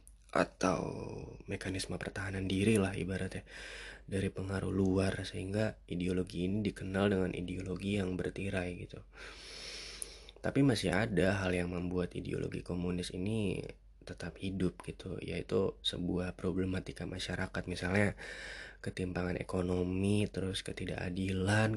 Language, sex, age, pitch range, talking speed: Indonesian, male, 20-39, 90-100 Hz, 110 wpm